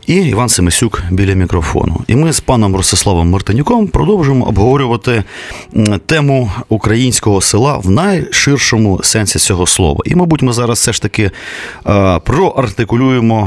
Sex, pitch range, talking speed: male, 95-130 Hz, 135 wpm